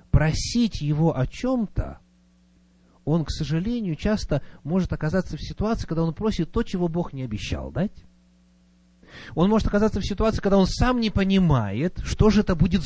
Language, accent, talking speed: Russian, native, 165 wpm